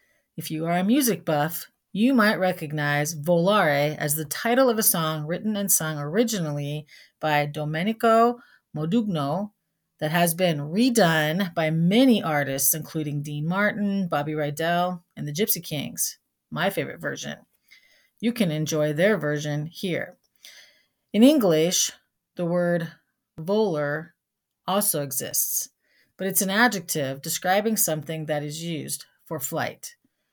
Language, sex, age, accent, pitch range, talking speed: English, female, 40-59, American, 150-205 Hz, 130 wpm